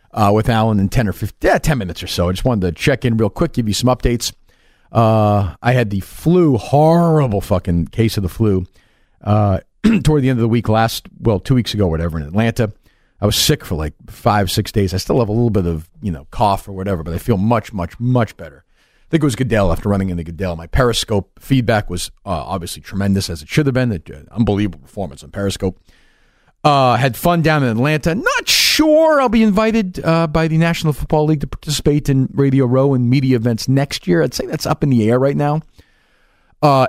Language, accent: English, American